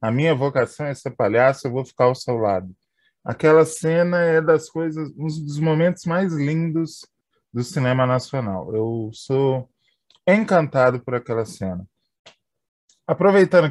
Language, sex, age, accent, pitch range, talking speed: Portuguese, male, 20-39, Brazilian, 115-155 Hz, 130 wpm